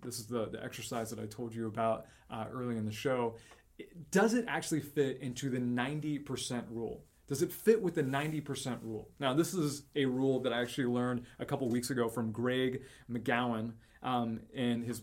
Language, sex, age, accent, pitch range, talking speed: English, male, 20-39, American, 115-145 Hz, 200 wpm